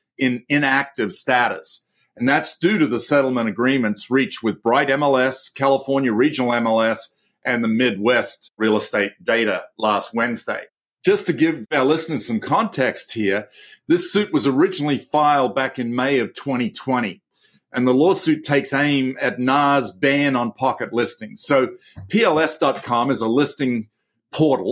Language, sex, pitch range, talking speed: English, male, 125-145 Hz, 145 wpm